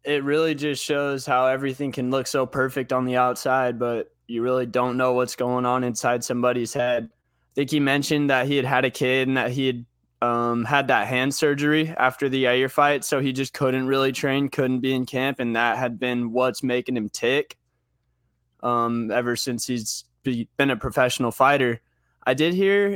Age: 20-39